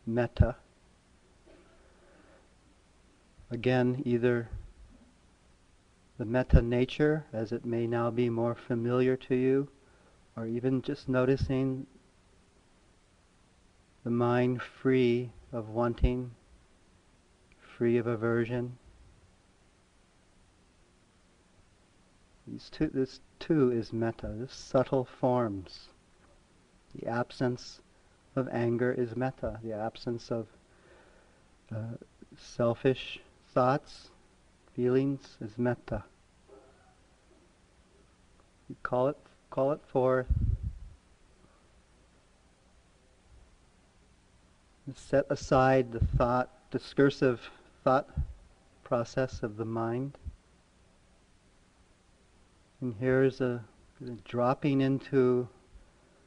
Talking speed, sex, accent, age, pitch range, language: 80 wpm, male, American, 40-59, 95-130 Hz, English